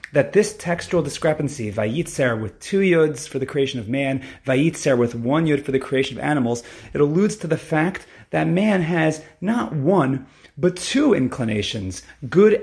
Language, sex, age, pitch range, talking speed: English, male, 30-49, 125-150 Hz, 170 wpm